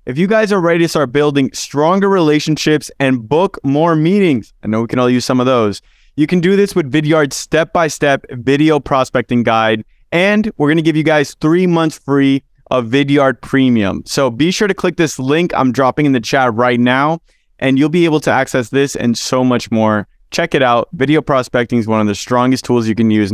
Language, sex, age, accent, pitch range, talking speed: English, male, 20-39, American, 120-165 Hz, 215 wpm